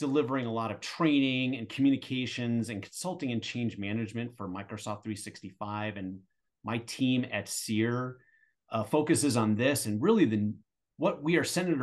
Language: English